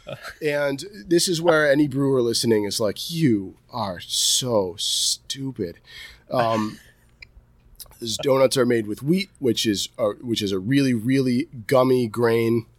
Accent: American